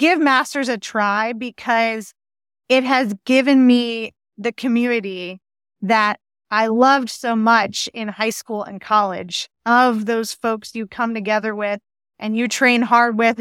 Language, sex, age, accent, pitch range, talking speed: English, female, 30-49, American, 220-260 Hz, 150 wpm